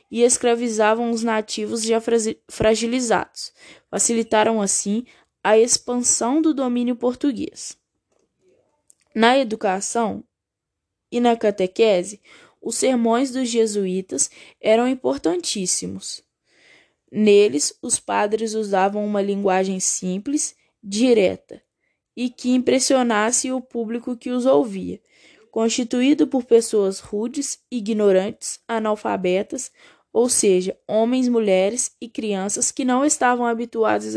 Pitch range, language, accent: 205-245 Hz, Portuguese, Brazilian